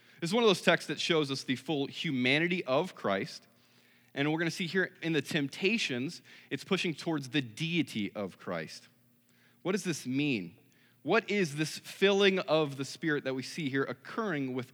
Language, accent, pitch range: English, American, 130-175 Hz